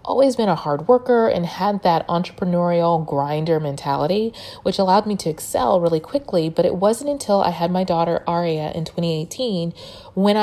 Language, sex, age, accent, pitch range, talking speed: English, female, 30-49, American, 160-210 Hz, 175 wpm